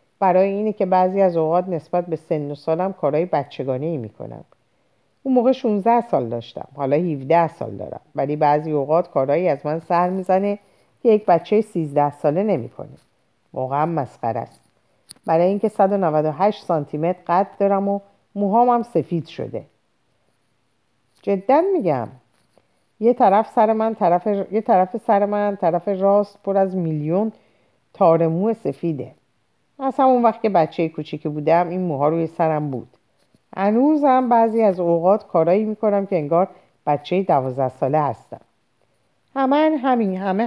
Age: 50-69